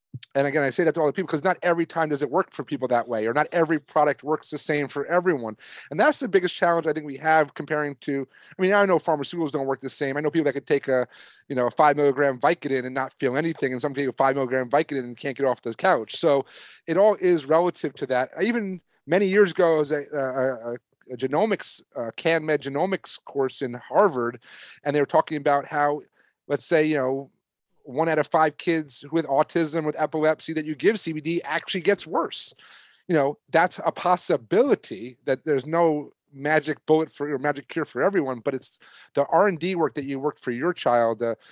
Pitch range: 135-165 Hz